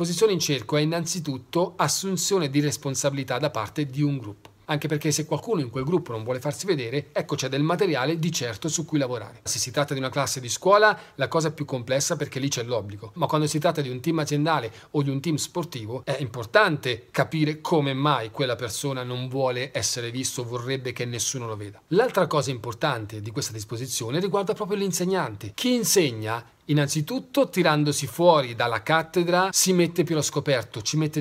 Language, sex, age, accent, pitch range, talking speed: Italian, male, 40-59, native, 130-165 Hz, 190 wpm